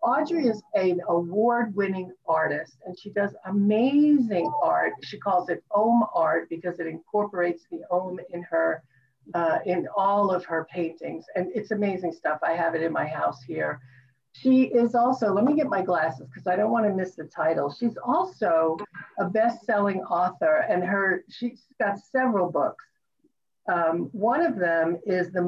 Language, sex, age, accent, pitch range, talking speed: English, female, 50-69, American, 170-230 Hz, 170 wpm